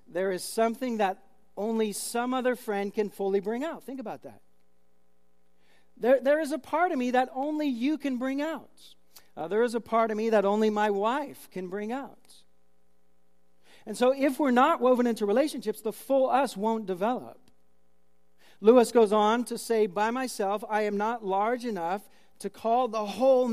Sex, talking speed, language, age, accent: male, 180 wpm, English, 40-59, American